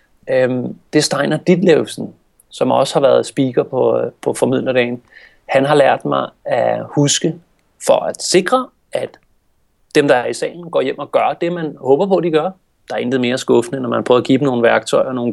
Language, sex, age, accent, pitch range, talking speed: Danish, male, 30-49, native, 130-180 Hz, 210 wpm